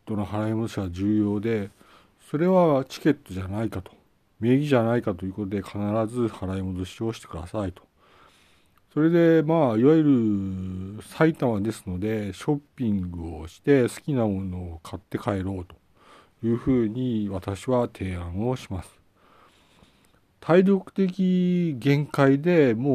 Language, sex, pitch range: Japanese, male, 100-140 Hz